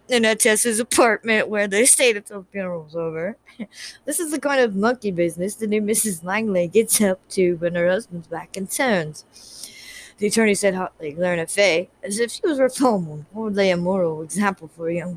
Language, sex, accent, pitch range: English, female, American, 170-230 Hz